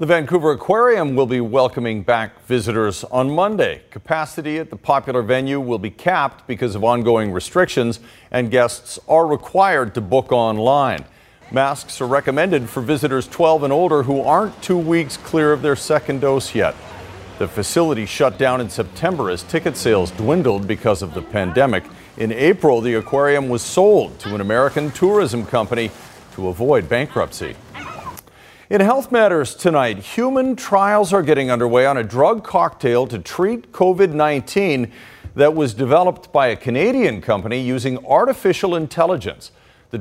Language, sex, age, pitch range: English, male, 50-69, 120-165 Hz